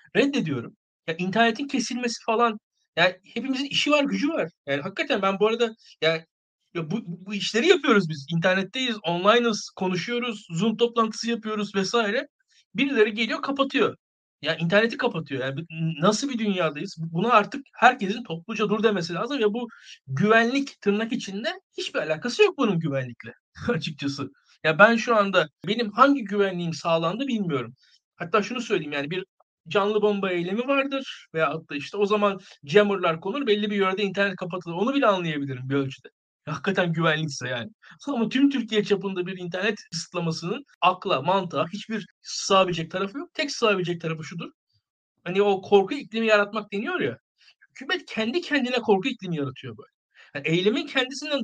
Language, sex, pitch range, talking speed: Turkish, male, 170-240 Hz, 150 wpm